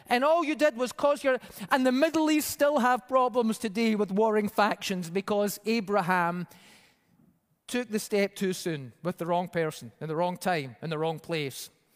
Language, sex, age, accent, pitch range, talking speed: English, male, 30-49, British, 205-280 Hz, 185 wpm